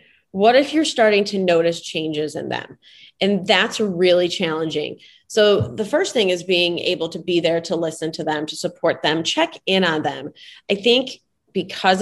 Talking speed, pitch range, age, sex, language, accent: 185 wpm, 160-195 Hz, 30-49, female, English, American